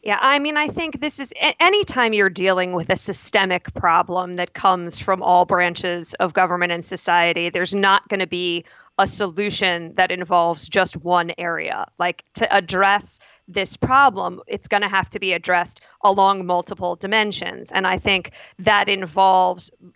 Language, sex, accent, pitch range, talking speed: English, female, American, 180-205 Hz, 165 wpm